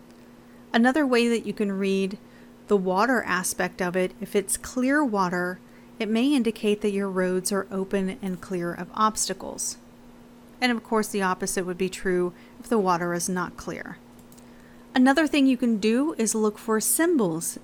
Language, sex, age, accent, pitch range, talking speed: English, female, 40-59, American, 190-235 Hz, 170 wpm